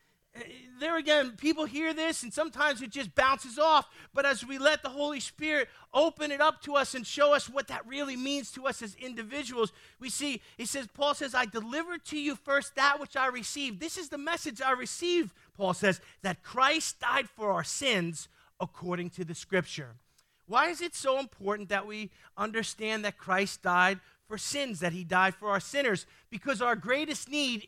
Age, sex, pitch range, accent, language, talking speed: 40-59, male, 225-305 Hz, American, English, 195 wpm